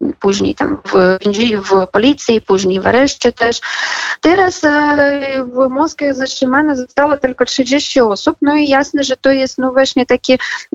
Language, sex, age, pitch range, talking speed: Polish, female, 20-39, 230-275 Hz, 130 wpm